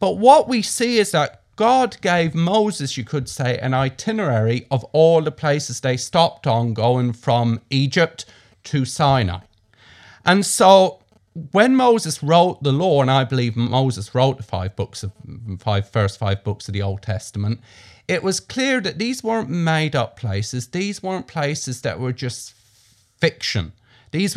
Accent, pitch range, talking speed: British, 115-180 Hz, 165 wpm